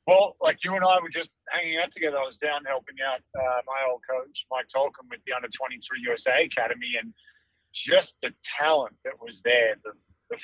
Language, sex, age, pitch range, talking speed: English, male, 30-49, 125-165 Hz, 200 wpm